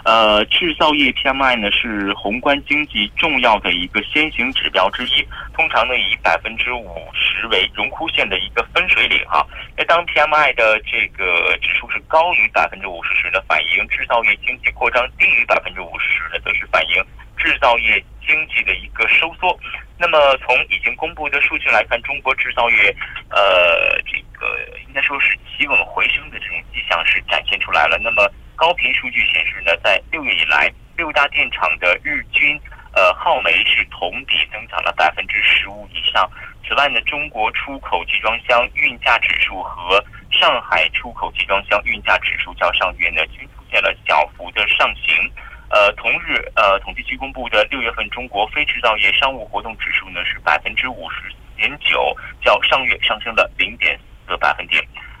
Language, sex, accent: Korean, male, Chinese